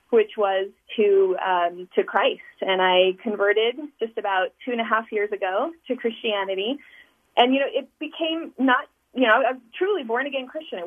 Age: 30-49